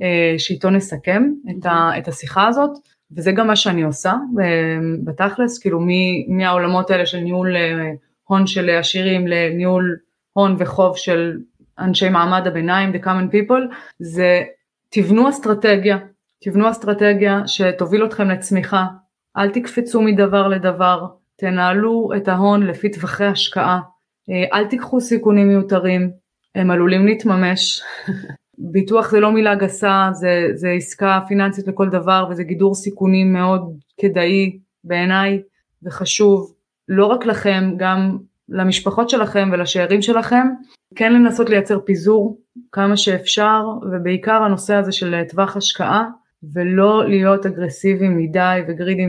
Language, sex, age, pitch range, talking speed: Hebrew, female, 20-39, 180-205 Hz, 115 wpm